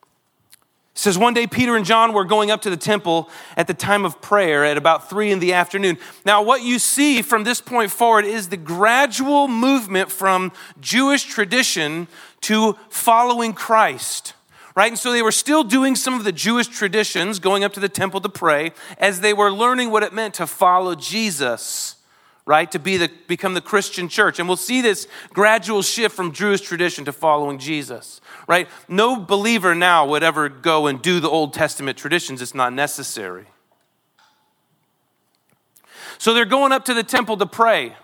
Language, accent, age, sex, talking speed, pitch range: English, American, 40-59, male, 185 wpm, 175-230 Hz